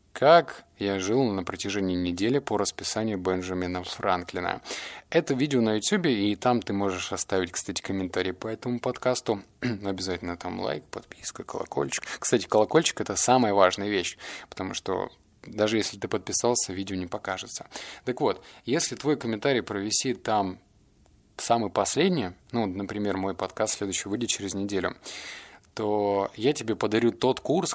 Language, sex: Russian, male